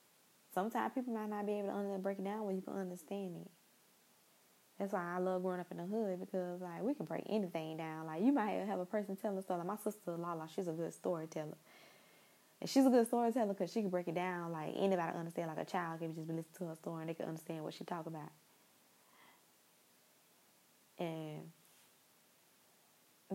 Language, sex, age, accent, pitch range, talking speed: English, female, 20-39, American, 170-200 Hz, 205 wpm